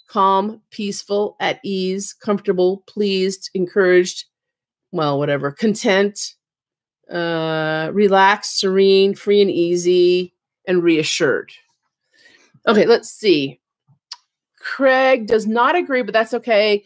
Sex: female